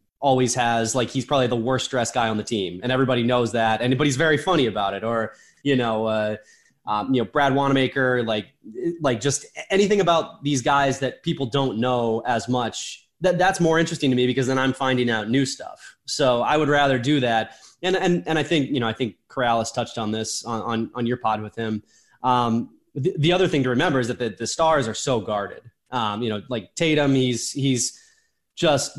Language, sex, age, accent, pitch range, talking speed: English, male, 20-39, American, 115-135 Hz, 220 wpm